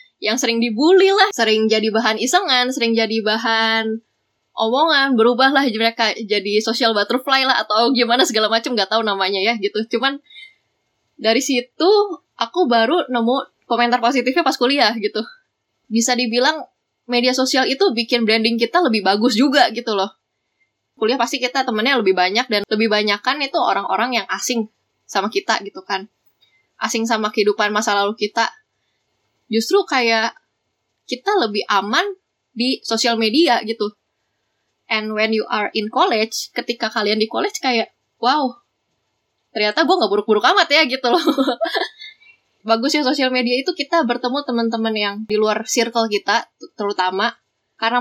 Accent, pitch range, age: native, 215-265 Hz, 10-29